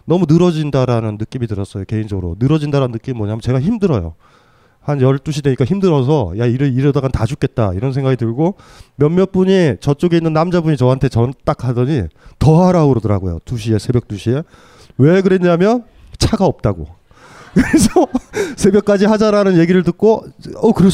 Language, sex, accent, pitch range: Korean, male, native, 130-175 Hz